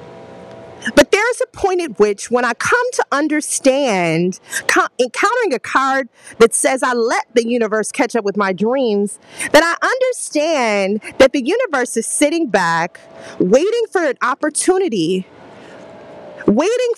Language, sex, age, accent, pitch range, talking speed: English, female, 30-49, American, 210-315 Hz, 140 wpm